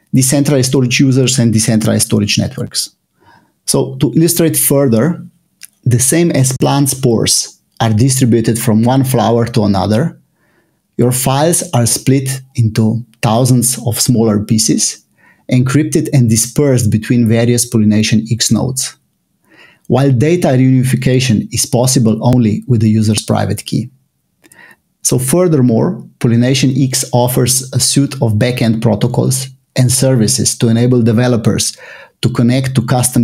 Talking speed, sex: 125 wpm, male